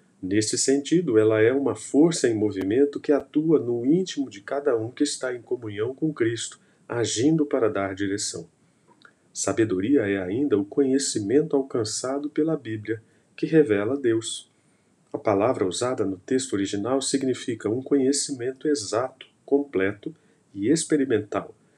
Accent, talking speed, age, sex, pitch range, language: Brazilian, 135 wpm, 40-59, male, 110-145 Hz, Portuguese